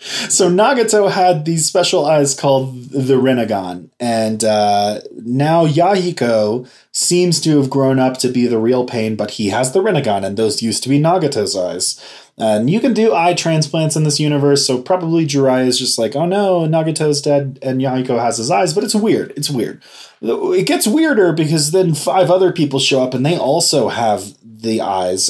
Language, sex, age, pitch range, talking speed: English, male, 20-39, 125-165 Hz, 190 wpm